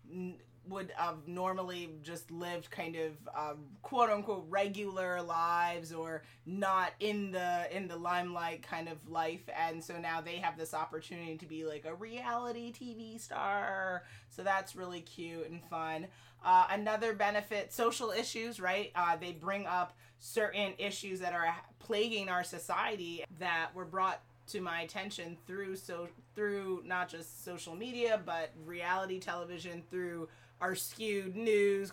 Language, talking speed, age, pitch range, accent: English, 145 wpm, 30-49, 165-195 Hz, American